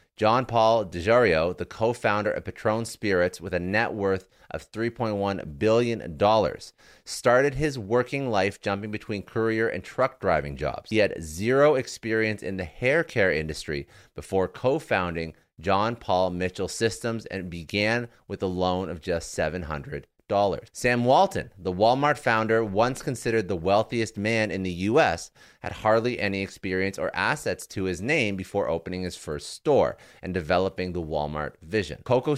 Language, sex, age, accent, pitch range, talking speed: English, male, 30-49, American, 95-115 Hz, 150 wpm